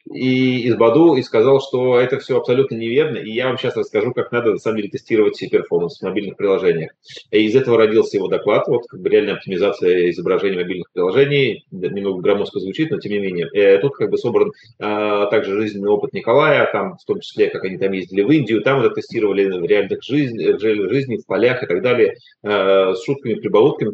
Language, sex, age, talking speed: Russian, male, 30-49, 200 wpm